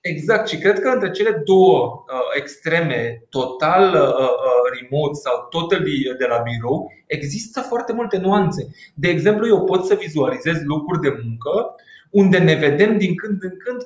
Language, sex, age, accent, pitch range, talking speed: Romanian, male, 20-39, native, 150-205 Hz, 150 wpm